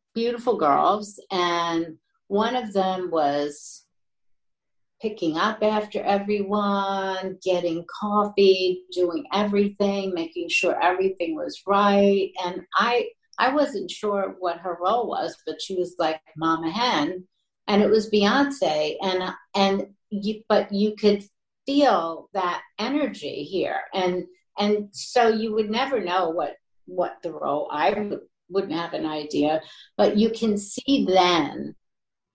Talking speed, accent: 130 wpm, American